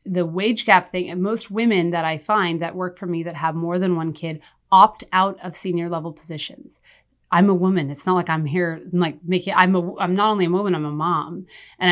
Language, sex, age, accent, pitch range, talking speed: English, female, 30-49, American, 175-210 Hz, 240 wpm